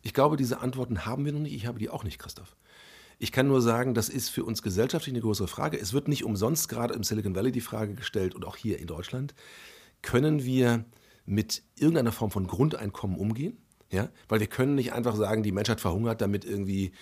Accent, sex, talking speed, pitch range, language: German, male, 215 wpm, 100-130 Hz, German